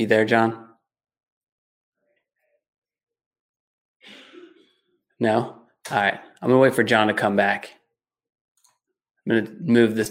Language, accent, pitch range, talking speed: English, American, 105-130 Hz, 105 wpm